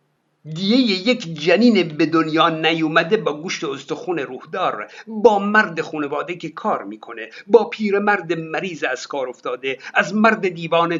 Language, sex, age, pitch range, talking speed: Persian, male, 50-69, 165-220 Hz, 135 wpm